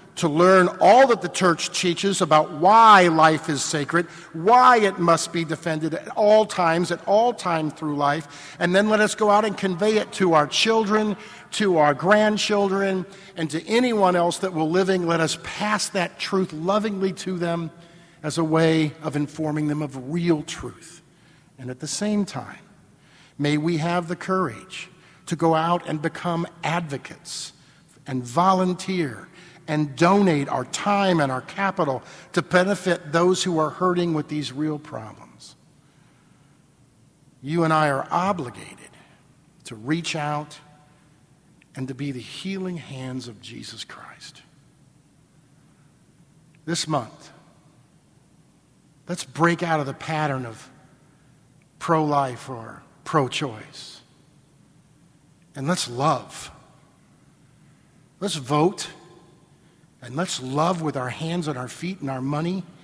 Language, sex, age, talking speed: English, male, 50-69, 140 wpm